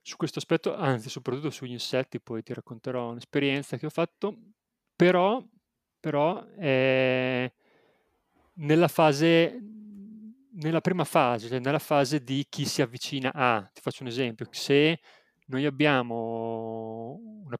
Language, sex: Italian, male